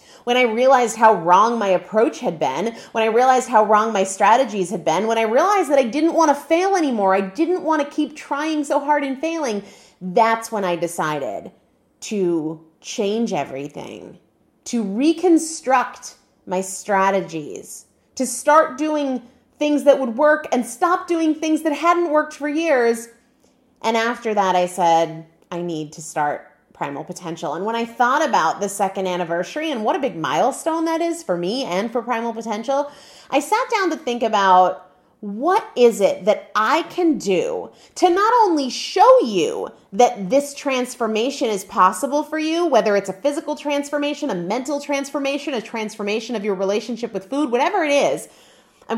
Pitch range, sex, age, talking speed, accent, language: 205-300 Hz, female, 30-49, 175 wpm, American, English